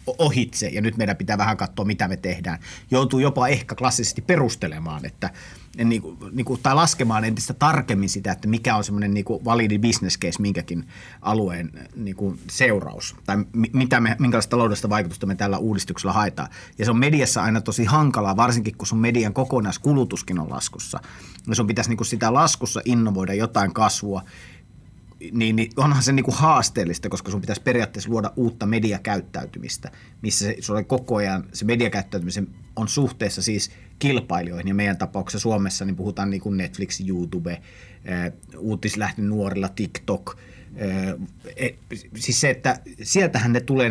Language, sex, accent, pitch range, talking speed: Finnish, male, native, 95-120 Hz, 155 wpm